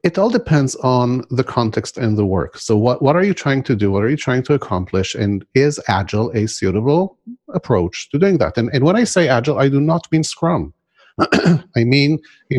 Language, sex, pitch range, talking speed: English, male, 110-155 Hz, 220 wpm